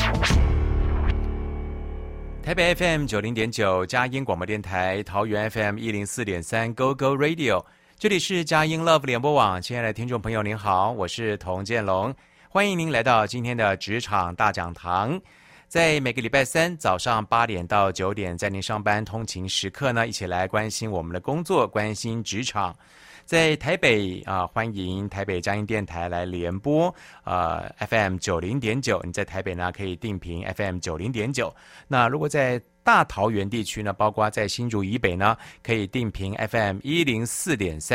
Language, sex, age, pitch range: Chinese, male, 30-49, 95-125 Hz